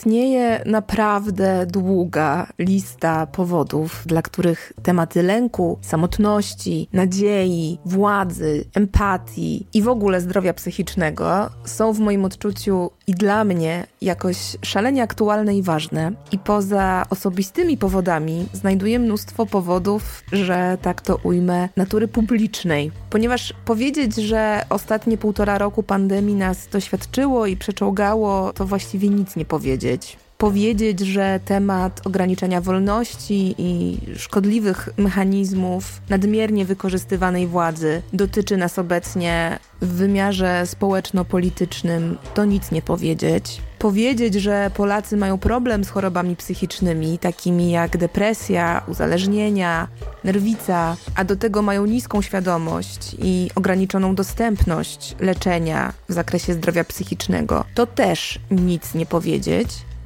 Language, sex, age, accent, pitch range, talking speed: Polish, female, 20-39, native, 175-205 Hz, 110 wpm